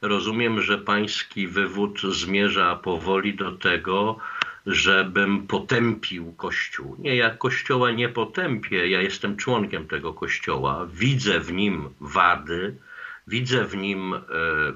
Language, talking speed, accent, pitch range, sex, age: Polish, 115 wpm, native, 100-125 Hz, male, 50-69